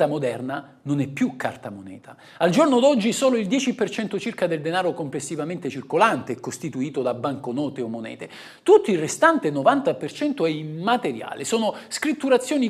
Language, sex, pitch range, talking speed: Italian, male, 155-250 Hz, 145 wpm